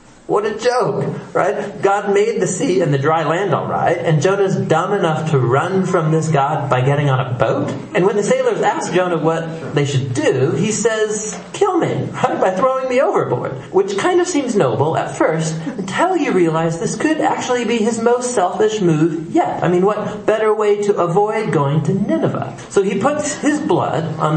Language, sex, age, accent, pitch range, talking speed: English, male, 40-59, American, 130-200 Hz, 200 wpm